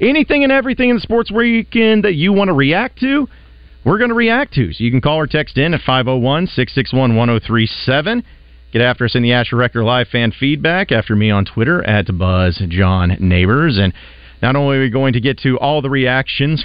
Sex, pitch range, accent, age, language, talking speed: male, 110-155 Hz, American, 40-59, English, 200 wpm